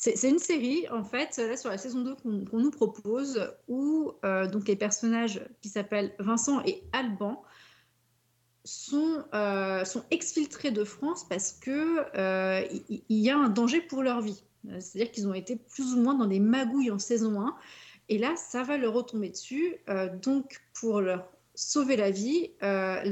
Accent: French